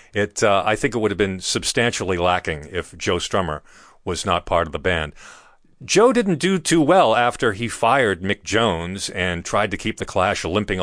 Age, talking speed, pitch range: 40-59, 200 wpm, 95-145 Hz